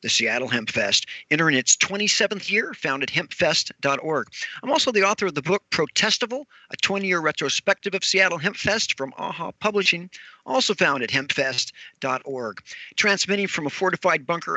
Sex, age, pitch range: male, 50-69, 155-205 Hz